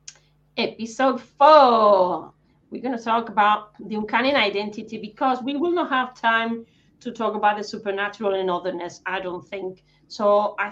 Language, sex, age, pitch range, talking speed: English, female, 30-49, 185-230 Hz, 155 wpm